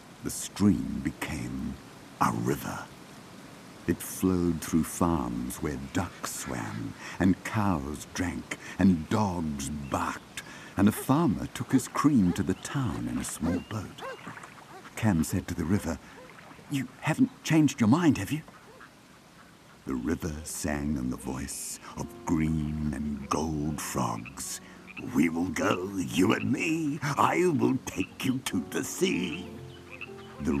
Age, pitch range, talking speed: 60-79, 75-100 Hz, 135 wpm